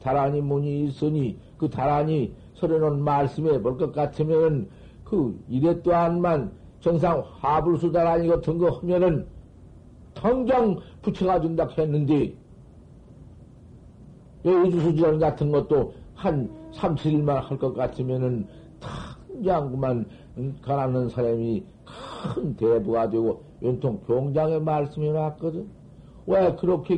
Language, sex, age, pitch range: Korean, male, 50-69, 130-170 Hz